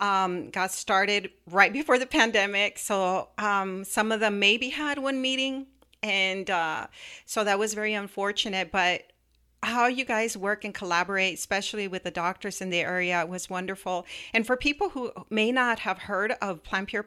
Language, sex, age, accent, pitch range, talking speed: English, female, 40-59, American, 190-225 Hz, 175 wpm